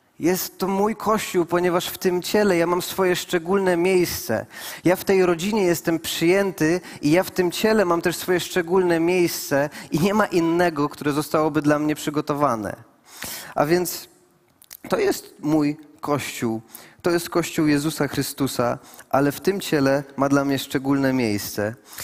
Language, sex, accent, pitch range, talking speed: Polish, male, native, 145-175 Hz, 160 wpm